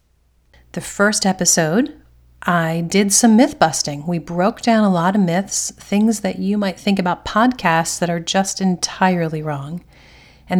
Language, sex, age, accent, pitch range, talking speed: English, female, 40-59, American, 165-200 Hz, 160 wpm